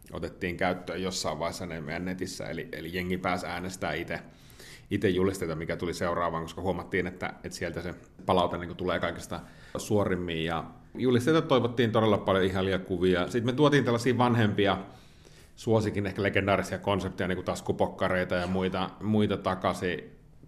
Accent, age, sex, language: native, 30-49, male, Finnish